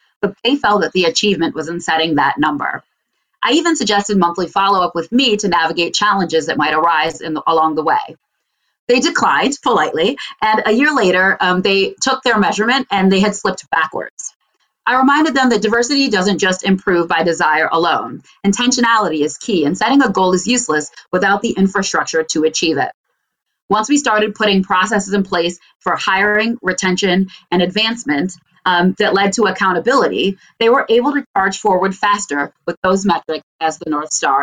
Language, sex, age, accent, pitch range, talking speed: English, female, 30-49, American, 170-225 Hz, 175 wpm